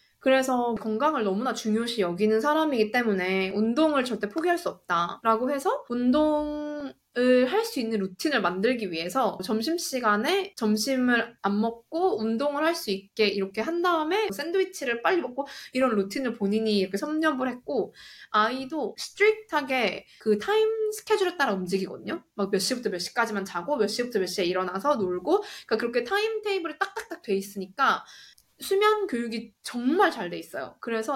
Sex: female